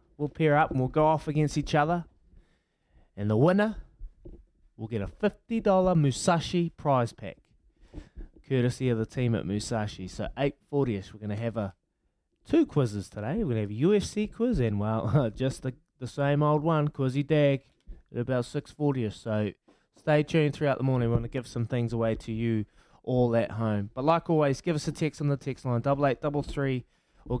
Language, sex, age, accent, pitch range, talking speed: English, male, 20-39, Australian, 110-155 Hz, 195 wpm